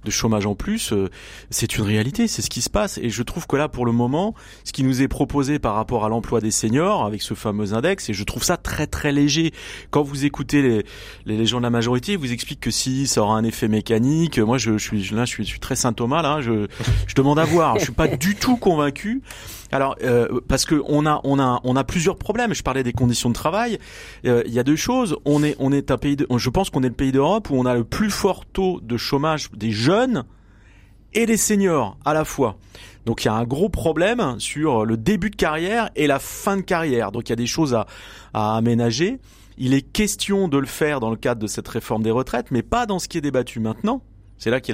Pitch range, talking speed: 115-155 Hz, 255 wpm